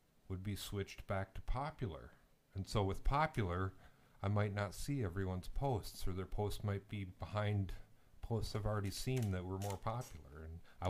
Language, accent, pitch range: English, American, 90-110 Hz